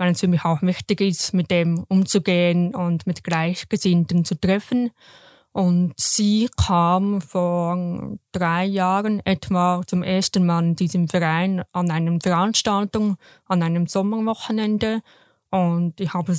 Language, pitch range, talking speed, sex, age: German, 175-200 Hz, 135 wpm, female, 20-39